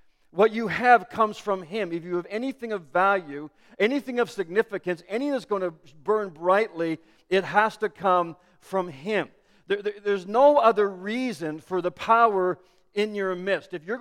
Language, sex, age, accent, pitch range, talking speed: English, male, 50-69, American, 180-215 Hz, 165 wpm